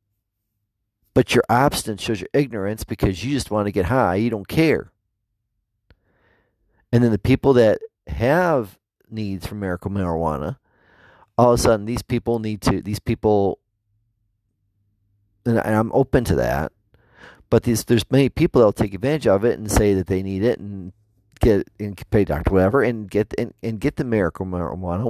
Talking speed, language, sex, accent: 170 wpm, English, male, American